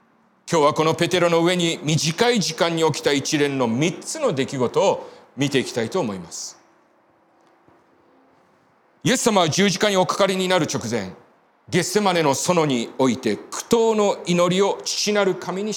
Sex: male